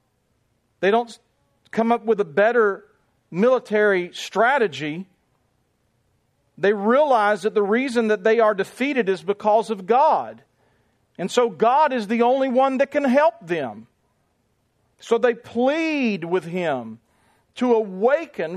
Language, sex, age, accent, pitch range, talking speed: English, male, 40-59, American, 205-280 Hz, 130 wpm